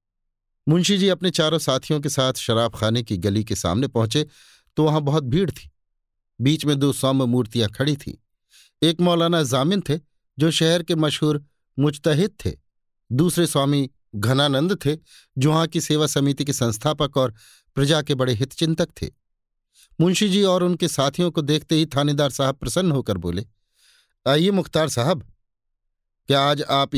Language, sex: Hindi, male